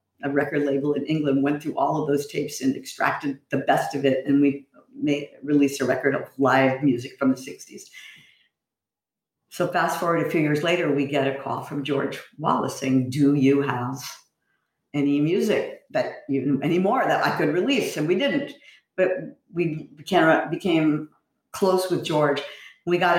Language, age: English, 50-69